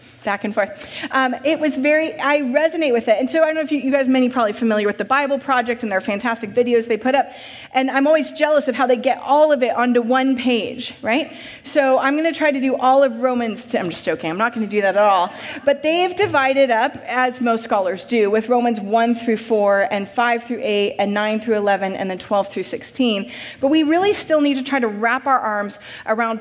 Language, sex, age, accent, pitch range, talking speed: English, female, 30-49, American, 210-275 Hz, 245 wpm